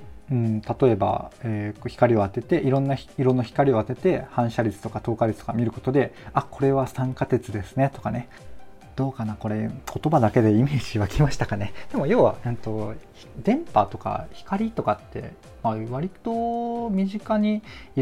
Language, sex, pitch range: Japanese, male, 105-150 Hz